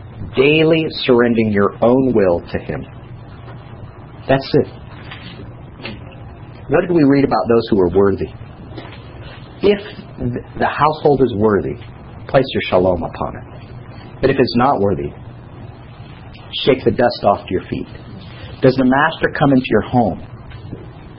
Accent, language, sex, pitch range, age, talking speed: American, English, male, 115-130 Hz, 50-69, 135 wpm